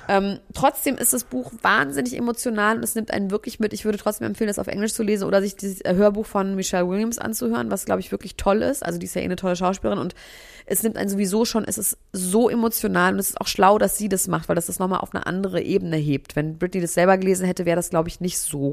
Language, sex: German, female